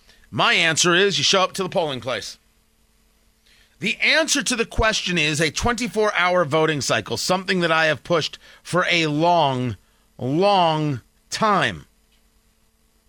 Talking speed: 140 wpm